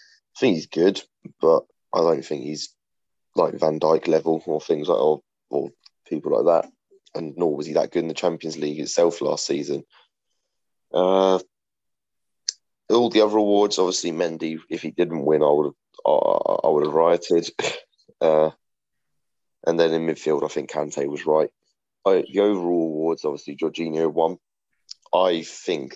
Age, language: 20-39, English